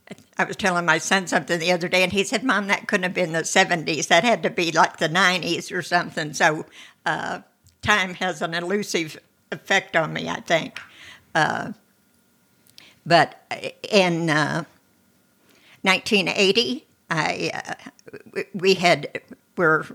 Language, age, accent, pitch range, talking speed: English, 60-79, American, 170-200 Hz, 145 wpm